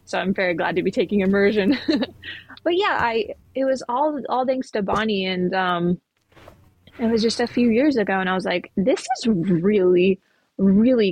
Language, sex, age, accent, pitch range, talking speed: English, female, 20-39, American, 190-235 Hz, 190 wpm